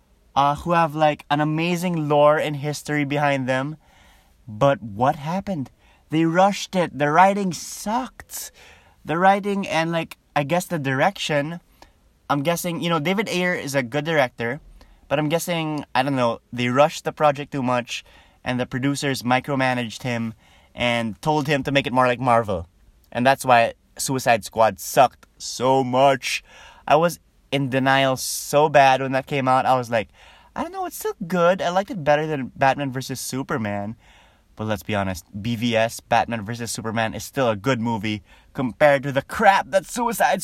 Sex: male